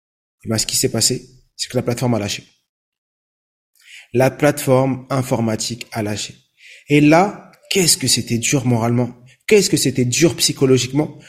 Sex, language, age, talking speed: male, French, 30-49, 155 wpm